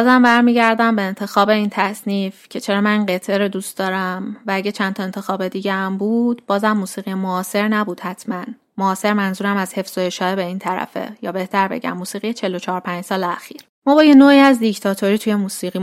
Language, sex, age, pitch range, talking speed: Persian, female, 20-39, 190-220 Hz, 180 wpm